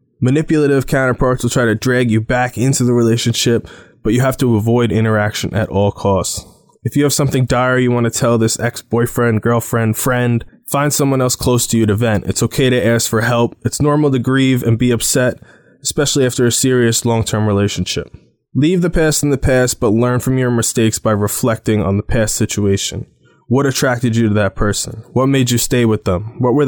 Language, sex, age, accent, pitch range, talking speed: English, male, 20-39, American, 110-130 Hz, 205 wpm